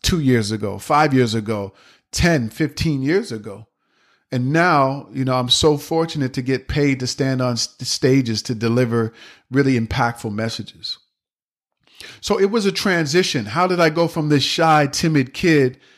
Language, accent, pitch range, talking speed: English, American, 125-160 Hz, 160 wpm